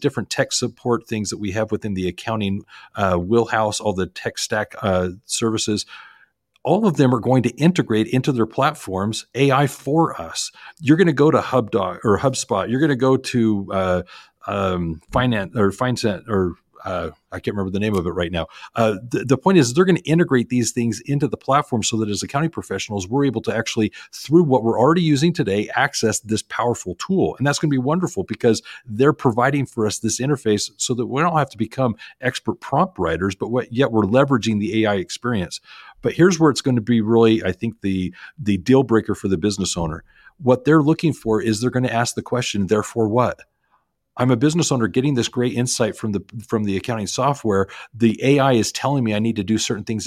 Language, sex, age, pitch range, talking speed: English, male, 40-59, 105-130 Hz, 215 wpm